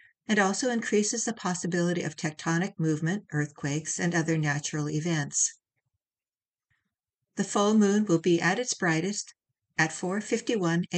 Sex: female